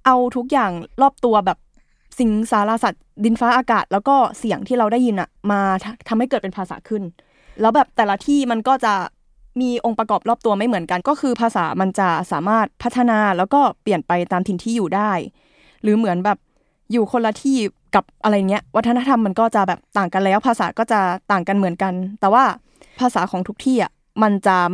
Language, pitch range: Thai, 190-235 Hz